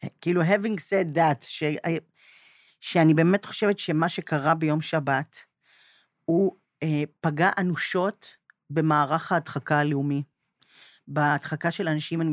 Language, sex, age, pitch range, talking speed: Hebrew, female, 40-59, 155-195 Hz, 110 wpm